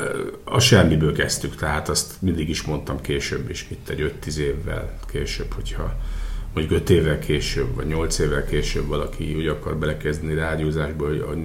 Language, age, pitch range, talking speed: Hungarian, 50-69, 75-90 Hz, 165 wpm